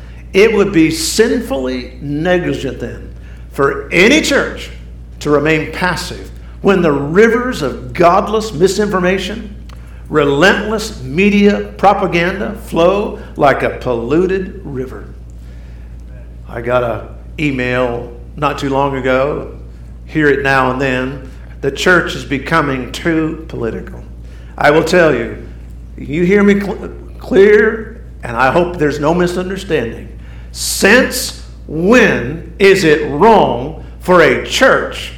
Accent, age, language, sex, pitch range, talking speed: American, 50-69, English, male, 125-205 Hz, 115 wpm